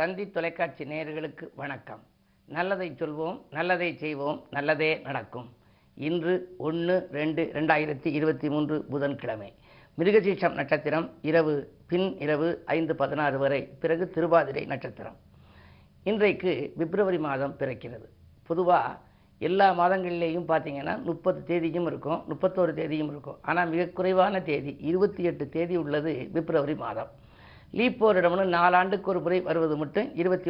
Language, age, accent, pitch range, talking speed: Tamil, 50-69, native, 150-185 Hz, 115 wpm